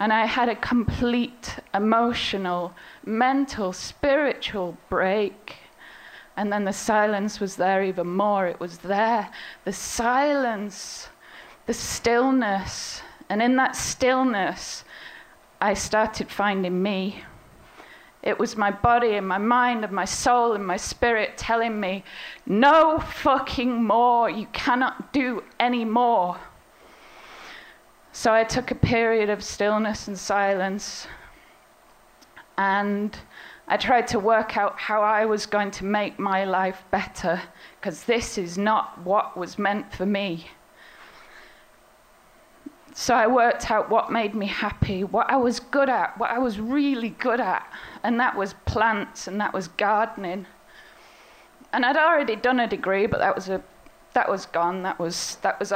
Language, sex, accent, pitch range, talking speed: English, female, British, 195-240 Hz, 140 wpm